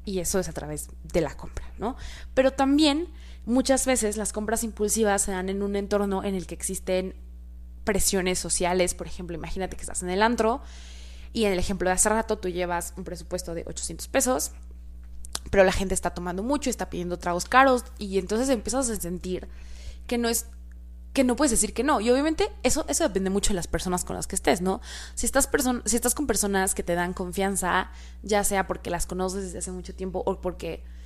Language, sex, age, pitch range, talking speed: Spanish, female, 20-39, 170-215 Hz, 205 wpm